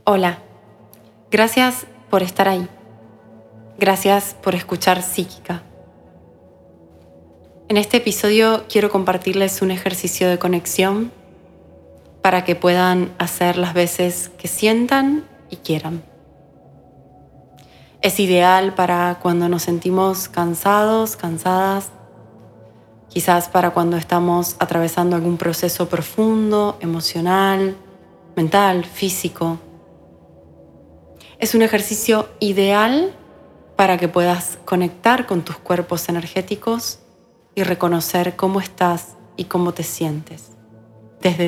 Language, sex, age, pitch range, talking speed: Spanish, female, 20-39, 130-190 Hz, 100 wpm